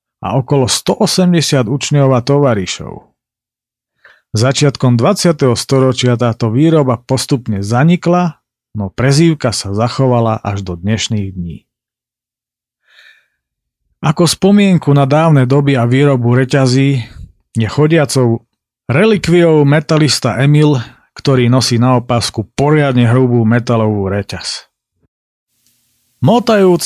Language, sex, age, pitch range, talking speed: Slovak, male, 40-59, 115-145 Hz, 95 wpm